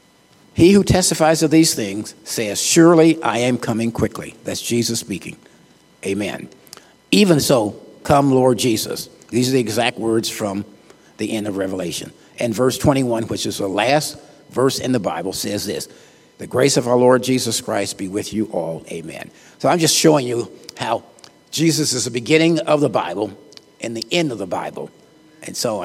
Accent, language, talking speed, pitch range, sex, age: American, English, 180 wpm, 115-150 Hz, male, 50-69